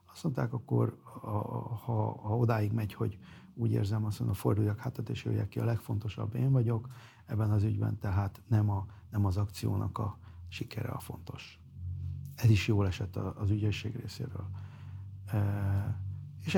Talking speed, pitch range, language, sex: 150 wpm, 100-115 Hz, Hungarian, male